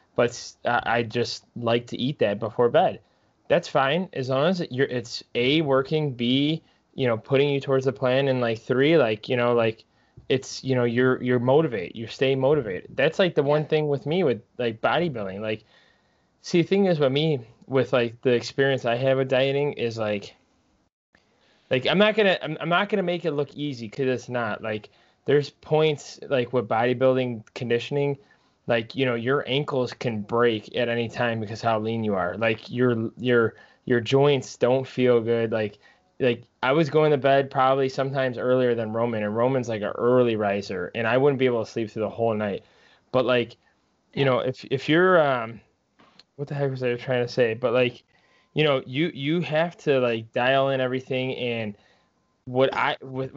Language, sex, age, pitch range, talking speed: English, male, 20-39, 115-140 Hz, 195 wpm